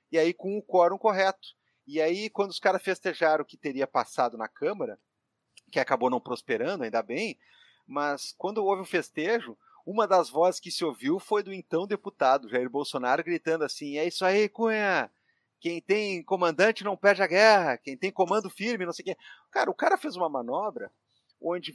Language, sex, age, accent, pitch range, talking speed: Portuguese, male, 40-59, Brazilian, 155-215 Hz, 190 wpm